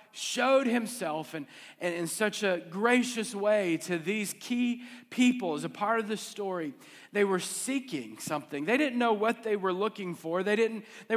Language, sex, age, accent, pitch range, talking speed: English, male, 40-59, American, 170-235 Hz, 185 wpm